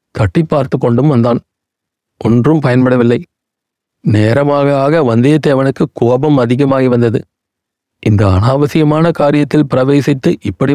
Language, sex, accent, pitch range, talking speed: Tamil, male, native, 120-145 Hz, 95 wpm